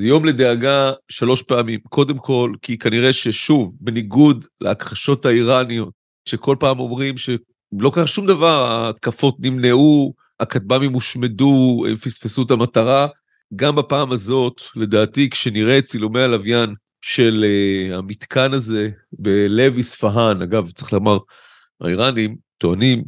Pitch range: 110-135 Hz